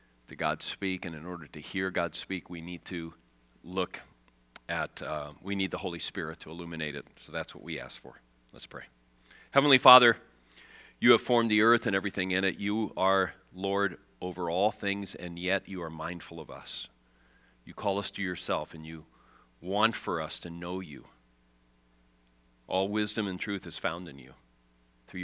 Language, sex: English, male